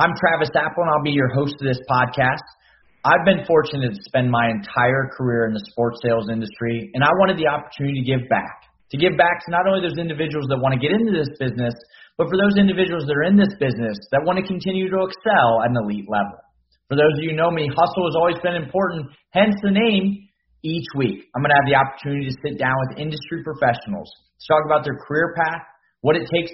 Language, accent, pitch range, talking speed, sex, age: English, American, 130-175 Hz, 235 wpm, male, 30-49